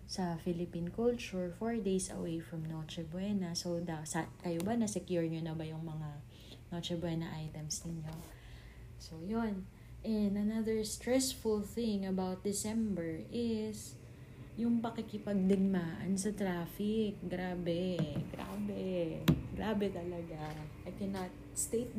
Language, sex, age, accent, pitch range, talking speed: Filipino, female, 20-39, native, 145-205 Hz, 120 wpm